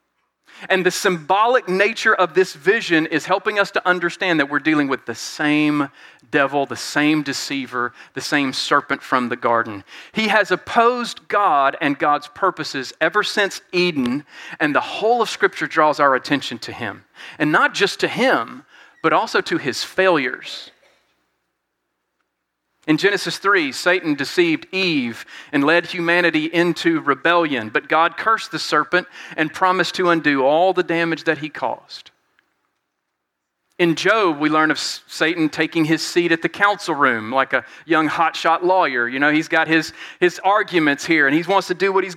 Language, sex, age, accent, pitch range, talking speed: English, male, 40-59, American, 145-185 Hz, 165 wpm